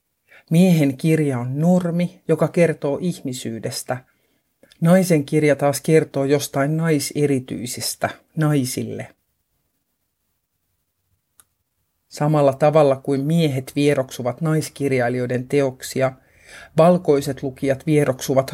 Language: Finnish